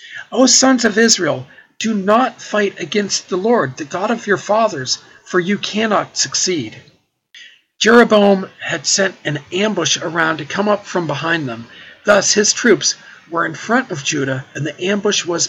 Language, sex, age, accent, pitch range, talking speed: English, male, 50-69, American, 150-205 Hz, 165 wpm